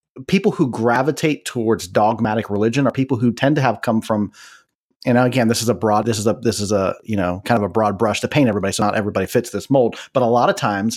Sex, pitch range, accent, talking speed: male, 115-170 Hz, American, 255 wpm